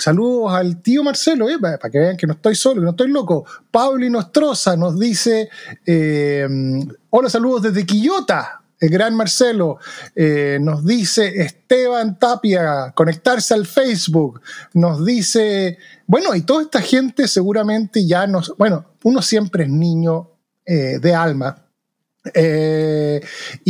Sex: male